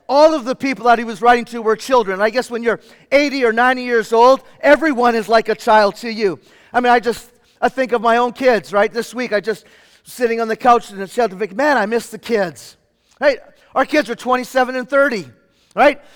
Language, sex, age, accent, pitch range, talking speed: English, male, 40-59, American, 200-260 Hz, 230 wpm